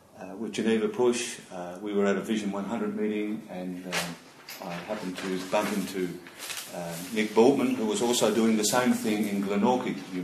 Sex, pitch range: male, 95-115 Hz